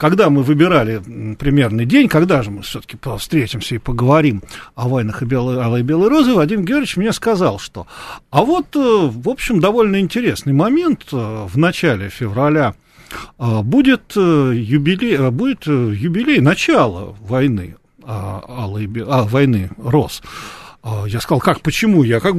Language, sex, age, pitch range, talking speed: Russian, male, 40-59, 115-195 Hz, 135 wpm